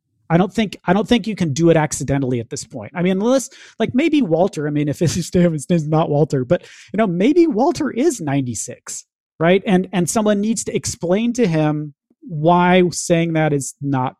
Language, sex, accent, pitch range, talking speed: English, male, American, 140-185 Hz, 205 wpm